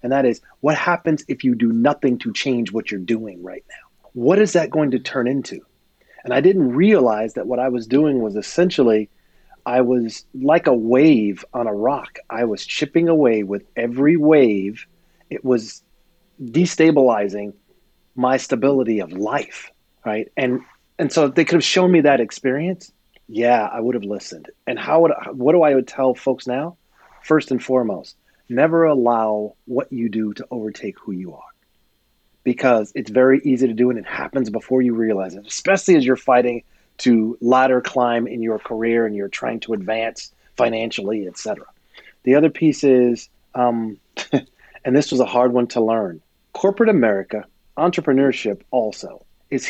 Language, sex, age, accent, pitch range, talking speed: English, male, 30-49, American, 115-140 Hz, 175 wpm